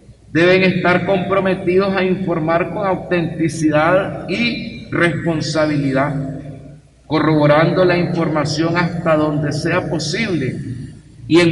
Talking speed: 95 wpm